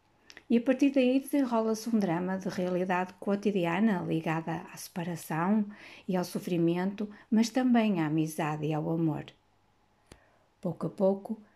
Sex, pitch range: female, 165-215 Hz